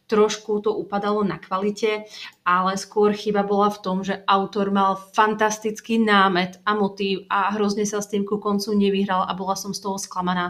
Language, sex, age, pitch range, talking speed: Slovak, female, 30-49, 180-205 Hz, 185 wpm